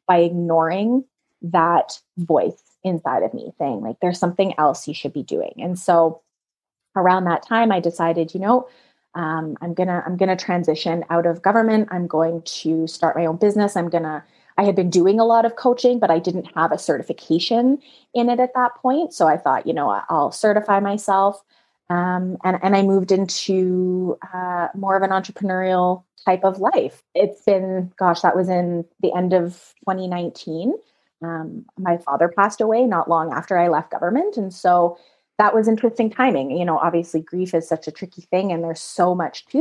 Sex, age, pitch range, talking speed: female, 20-39, 170-205 Hz, 190 wpm